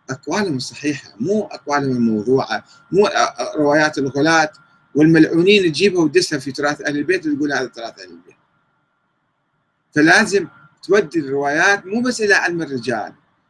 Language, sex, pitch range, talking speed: Arabic, male, 135-210 Hz, 125 wpm